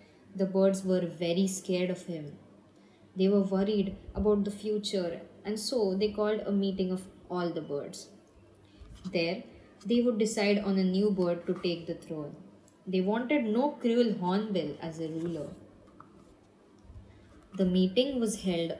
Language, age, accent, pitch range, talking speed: English, 20-39, Indian, 165-210 Hz, 150 wpm